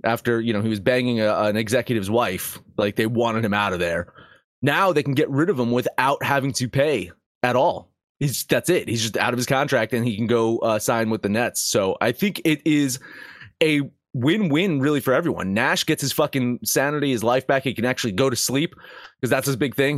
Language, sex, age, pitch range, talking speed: English, male, 30-49, 110-140 Hz, 230 wpm